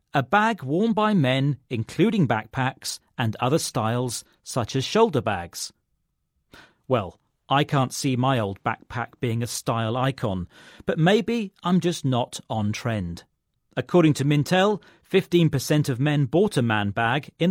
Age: 40-59